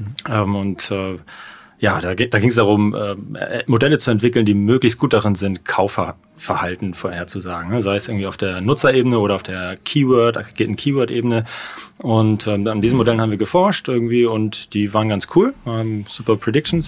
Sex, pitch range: male, 105-120 Hz